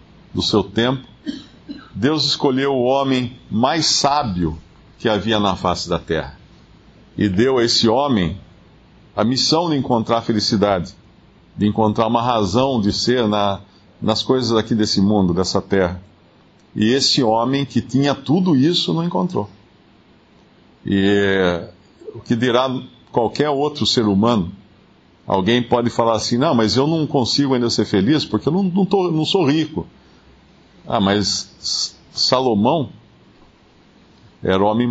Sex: male